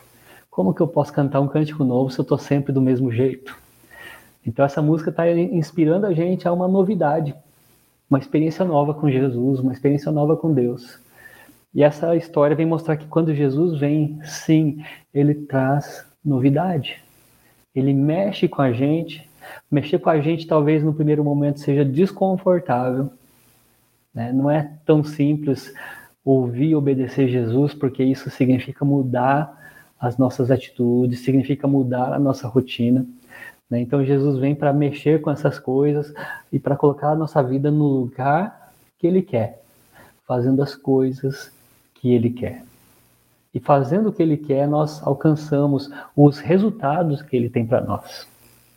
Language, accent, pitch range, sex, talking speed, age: Portuguese, Brazilian, 130-155 Hz, male, 155 wpm, 20-39